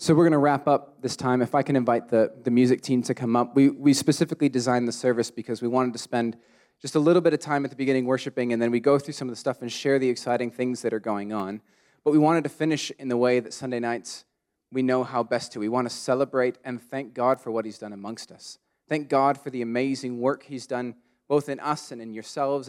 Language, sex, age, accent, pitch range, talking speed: English, male, 20-39, American, 120-145 Hz, 265 wpm